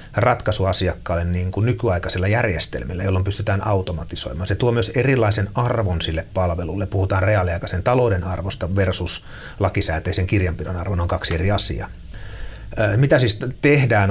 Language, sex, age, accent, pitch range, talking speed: Finnish, male, 30-49, native, 90-105 Hz, 125 wpm